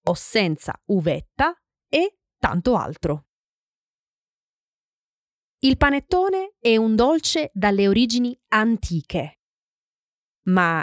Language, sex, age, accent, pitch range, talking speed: Italian, female, 30-49, native, 180-275 Hz, 85 wpm